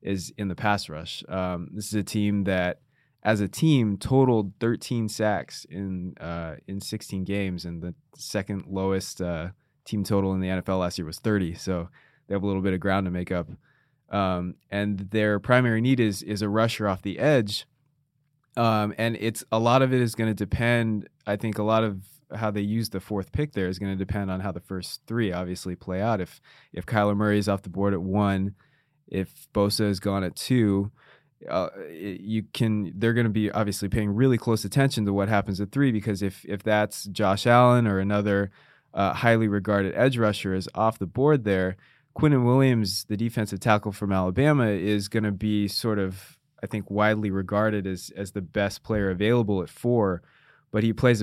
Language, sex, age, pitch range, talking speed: English, male, 20-39, 95-115 Hz, 205 wpm